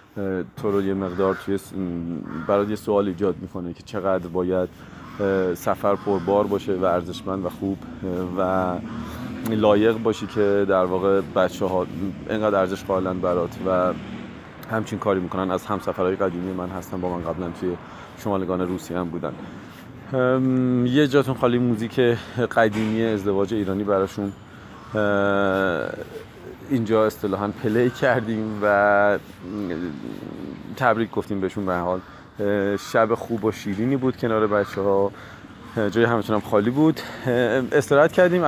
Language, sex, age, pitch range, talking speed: Persian, male, 40-59, 95-115 Hz, 135 wpm